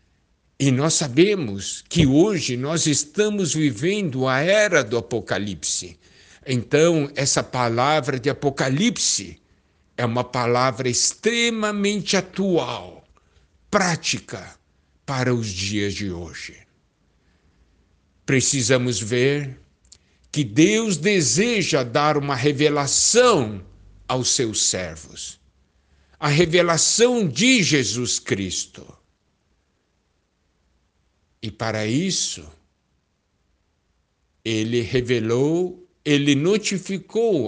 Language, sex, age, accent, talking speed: Portuguese, male, 60-79, Brazilian, 80 wpm